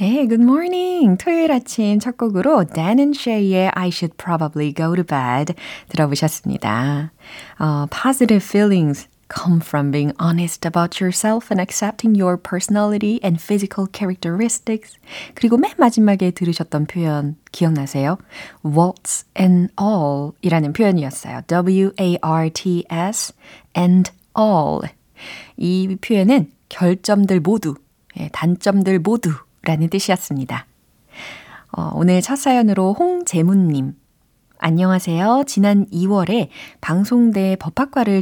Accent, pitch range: native, 155-210 Hz